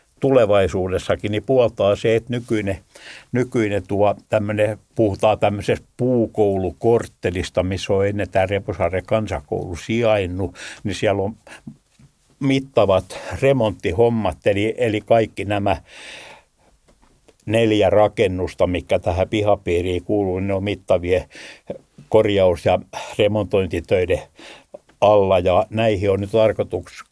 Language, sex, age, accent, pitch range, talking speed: Finnish, male, 60-79, native, 100-115 Hz, 100 wpm